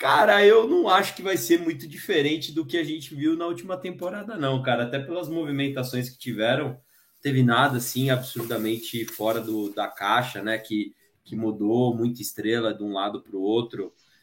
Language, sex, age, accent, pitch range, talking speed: Portuguese, male, 20-39, Brazilian, 100-130 Hz, 190 wpm